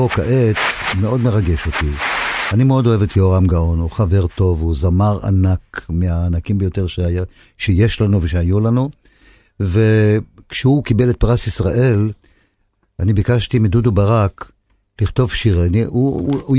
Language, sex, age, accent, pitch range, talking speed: Hebrew, male, 50-69, native, 95-120 Hz, 130 wpm